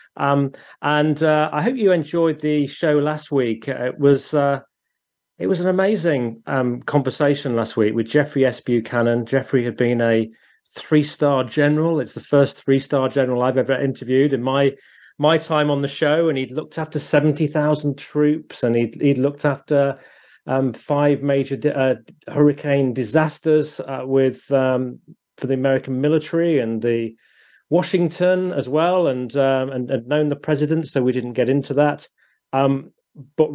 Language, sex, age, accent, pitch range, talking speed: English, male, 30-49, British, 125-150 Hz, 165 wpm